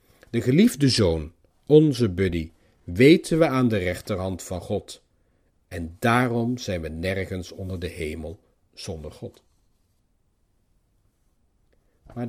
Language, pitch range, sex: Dutch, 90-140 Hz, male